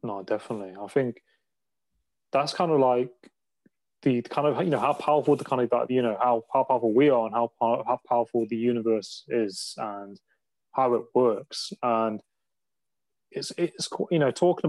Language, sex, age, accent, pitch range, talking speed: English, male, 20-39, British, 115-130 Hz, 175 wpm